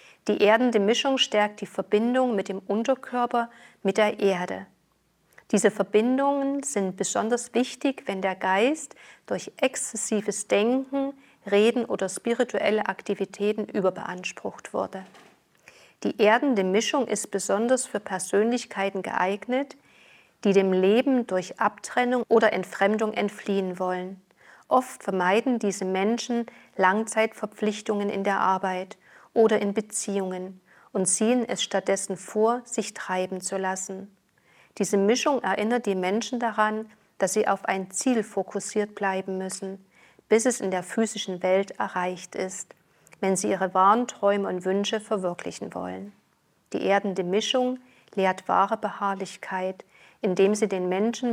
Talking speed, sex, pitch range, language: 125 wpm, female, 190-225 Hz, German